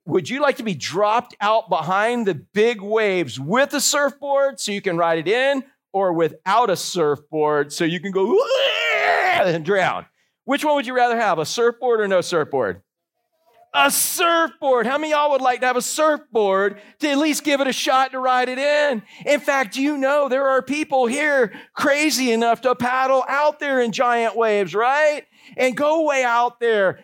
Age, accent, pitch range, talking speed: 40-59, American, 225-285 Hz, 195 wpm